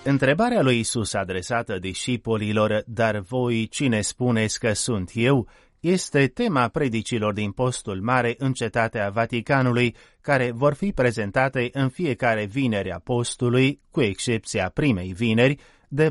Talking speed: 130 wpm